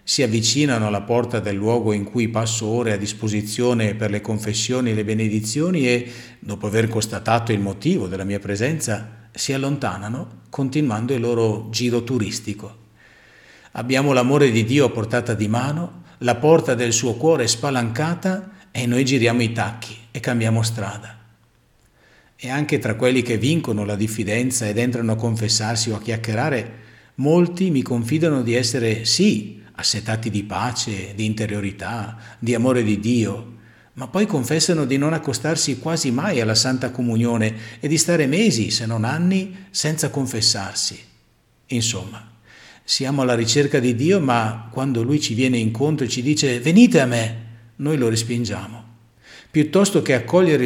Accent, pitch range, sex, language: native, 110-140 Hz, male, Italian